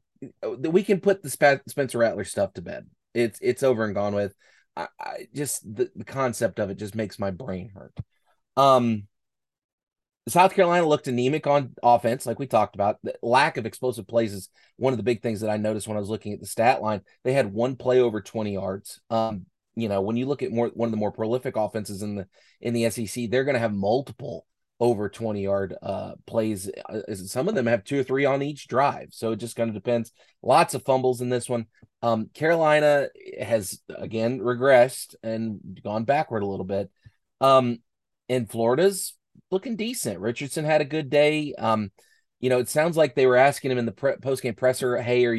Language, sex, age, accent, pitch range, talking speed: English, male, 30-49, American, 110-135 Hz, 210 wpm